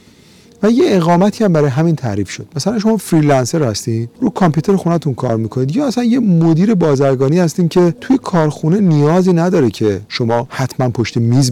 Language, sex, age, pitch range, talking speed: Persian, male, 40-59, 115-160 Hz, 170 wpm